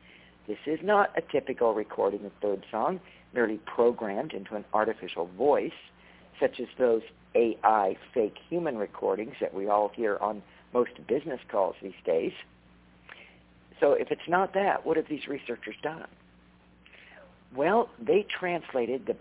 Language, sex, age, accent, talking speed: English, male, 50-69, American, 145 wpm